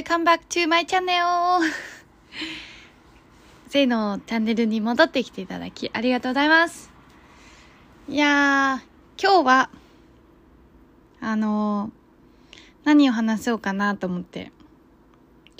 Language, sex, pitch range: Japanese, female, 205-295 Hz